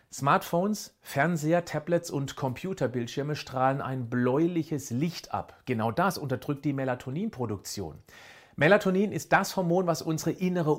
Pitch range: 130-175 Hz